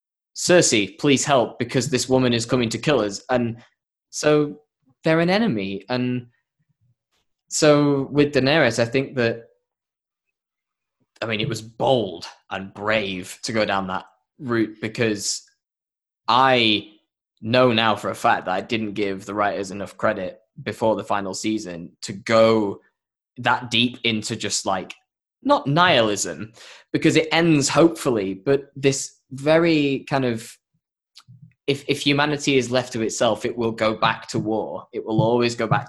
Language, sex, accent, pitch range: English, male, British, 110-140 Hz